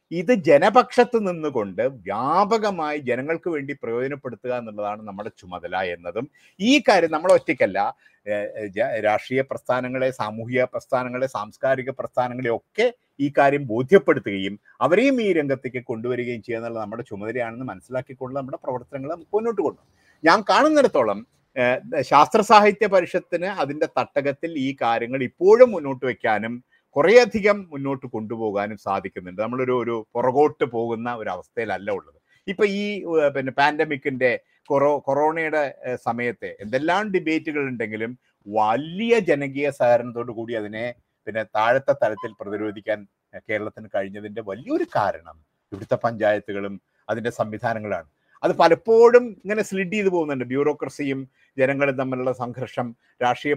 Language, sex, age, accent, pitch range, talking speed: Malayalam, male, 50-69, native, 115-165 Hz, 105 wpm